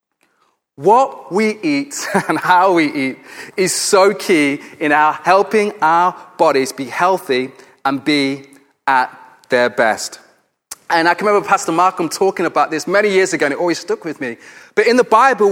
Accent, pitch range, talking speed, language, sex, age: British, 180-245 Hz, 170 wpm, English, male, 30-49